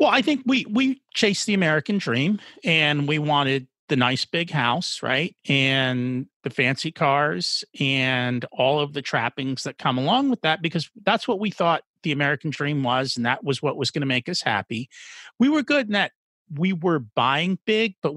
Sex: male